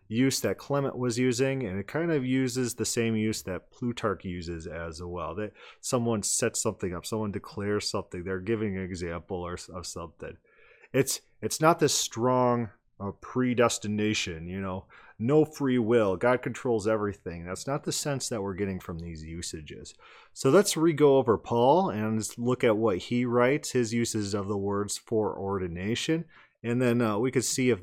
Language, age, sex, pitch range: English, 30-49, male, 100-130 Hz